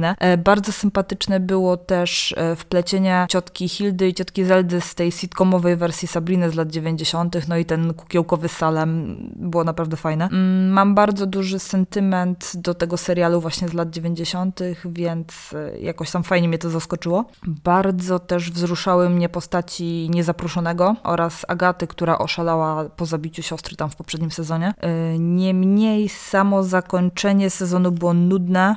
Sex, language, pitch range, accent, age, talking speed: female, Polish, 165-190 Hz, native, 20-39, 140 wpm